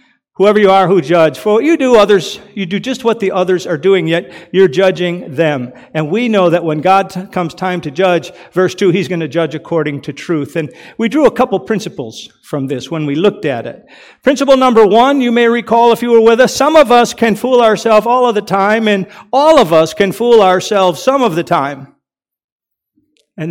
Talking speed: 220 wpm